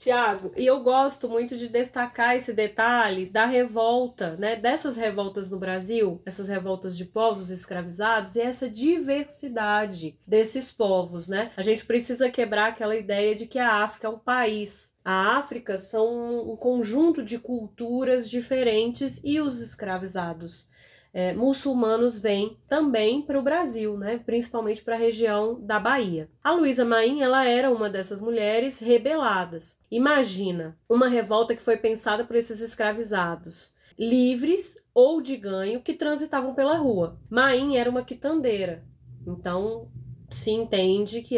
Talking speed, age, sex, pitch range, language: 140 wpm, 30-49, female, 200-250 Hz, Portuguese